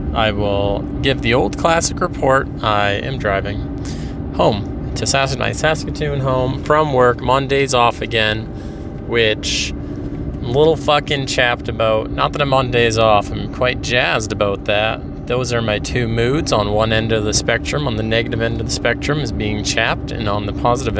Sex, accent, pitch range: male, American, 100-125 Hz